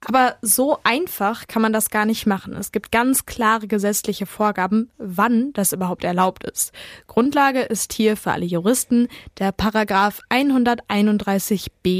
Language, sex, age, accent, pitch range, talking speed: German, female, 10-29, German, 200-230 Hz, 145 wpm